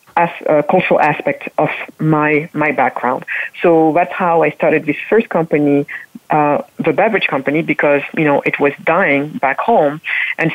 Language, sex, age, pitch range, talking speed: English, female, 40-59, 150-195 Hz, 175 wpm